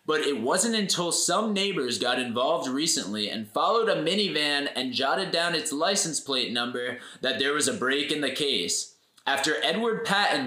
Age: 20-39